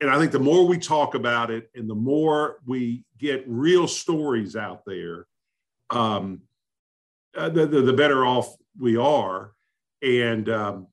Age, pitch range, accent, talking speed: 50-69, 110-145 Hz, American, 155 wpm